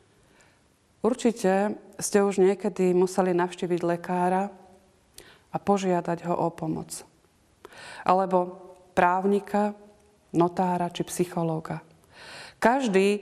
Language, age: Slovak, 30-49